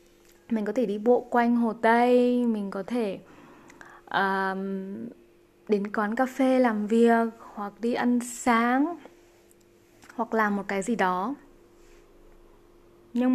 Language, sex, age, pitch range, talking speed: Vietnamese, female, 20-39, 195-255 Hz, 130 wpm